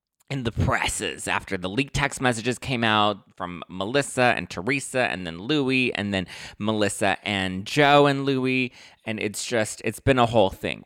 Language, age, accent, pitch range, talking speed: English, 20-39, American, 95-130 Hz, 175 wpm